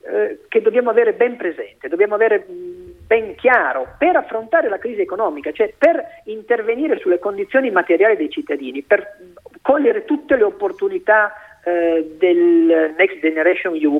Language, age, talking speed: Italian, 40-59, 135 wpm